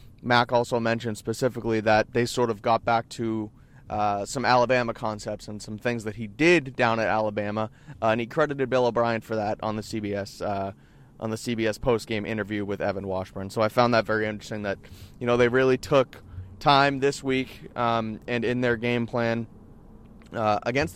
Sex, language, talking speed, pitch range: male, English, 190 wpm, 110-130 Hz